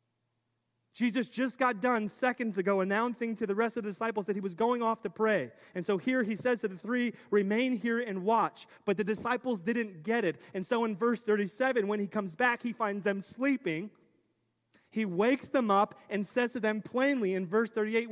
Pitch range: 170-210 Hz